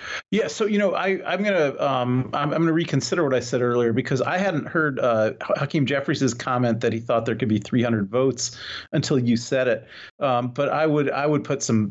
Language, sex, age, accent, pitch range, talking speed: English, male, 40-59, American, 115-140 Hz, 235 wpm